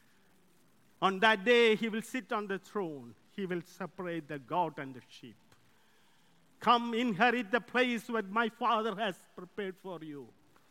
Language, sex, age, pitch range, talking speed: English, male, 50-69, 145-210 Hz, 155 wpm